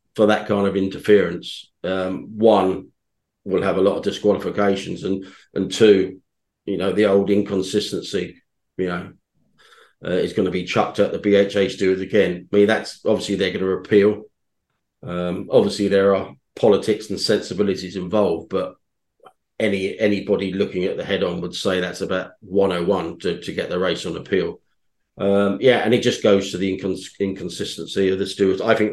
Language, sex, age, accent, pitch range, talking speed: English, male, 40-59, British, 95-100 Hz, 180 wpm